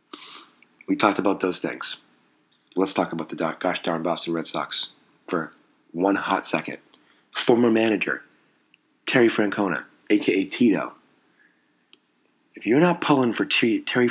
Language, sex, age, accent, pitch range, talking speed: English, male, 30-49, American, 90-115 Hz, 130 wpm